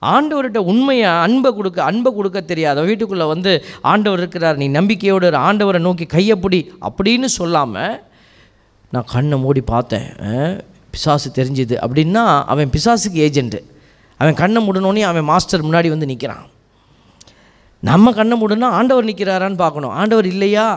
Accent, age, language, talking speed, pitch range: native, 20-39, Tamil, 125 wpm, 150-210 Hz